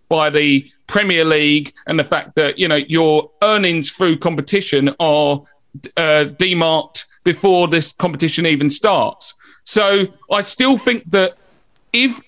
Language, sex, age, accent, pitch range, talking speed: English, male, 40-59, British, 155-210 Hz, 135 wpm